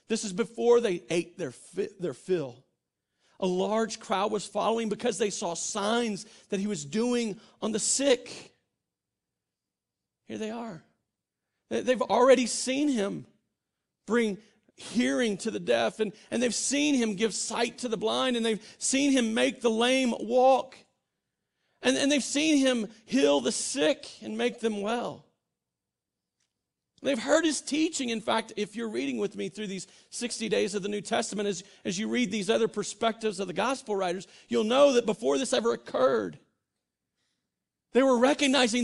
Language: English